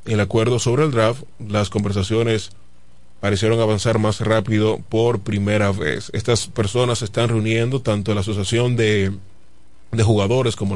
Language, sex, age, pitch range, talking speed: Spanish, male, 30-49, 100-120 Hz, 145 wpm